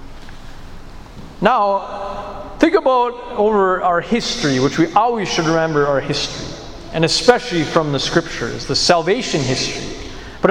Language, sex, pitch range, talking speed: English, male, 150-205 Hz, 125 wpm